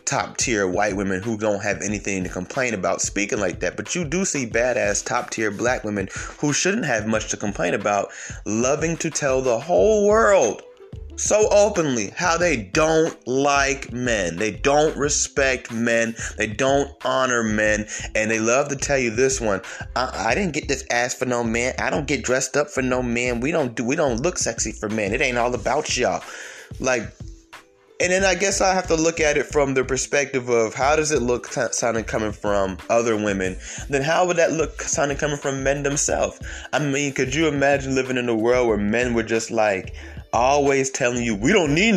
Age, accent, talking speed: 20-39, American, 205 wpm